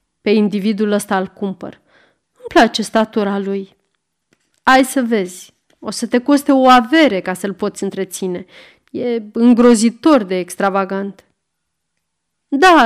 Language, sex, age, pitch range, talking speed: Romanian, female, 30-49, 205-265 Hz, 125 wpm